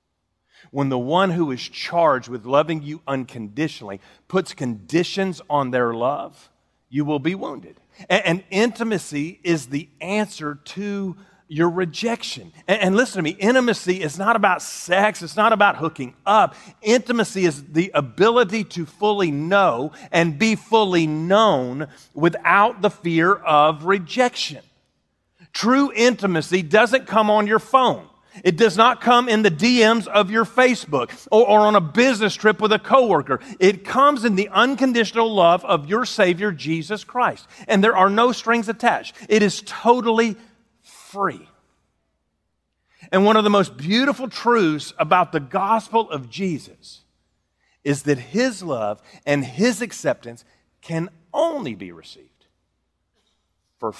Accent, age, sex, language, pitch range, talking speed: American, 40-59, male, English, 150-225 Hz, 140 wpm